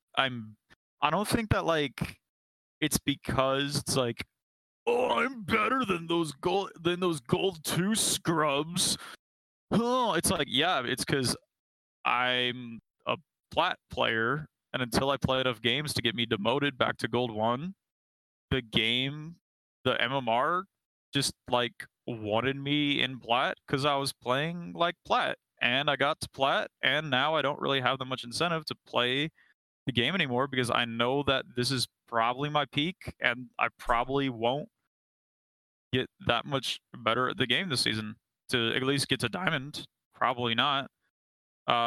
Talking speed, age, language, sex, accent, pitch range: 160 wpm, 20-39, English, male, American, 120-155 Hz